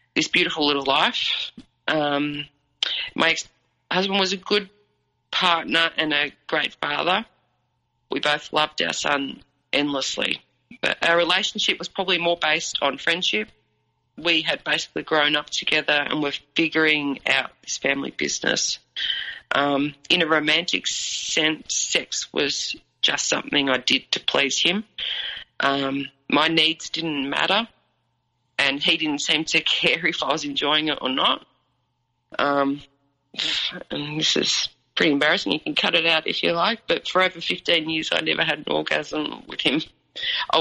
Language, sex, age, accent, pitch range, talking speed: English, female, 30-49, Australian, 140-165 Hz, 150 wpm